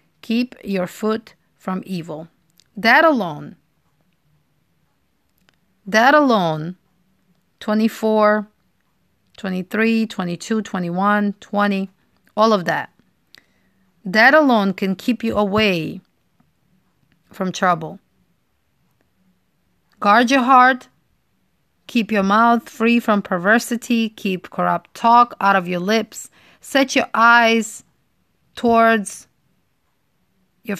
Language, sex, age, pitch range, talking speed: English, female, 30-49, 180-225 Hz, 90 wpm